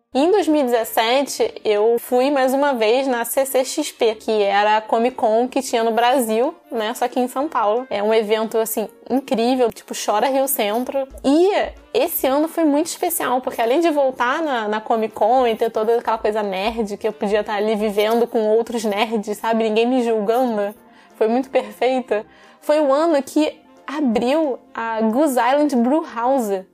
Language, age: Portuguese, 10-29